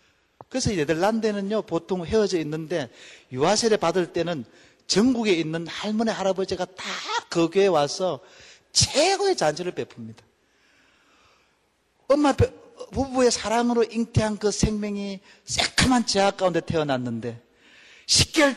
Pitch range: 160-225 Hz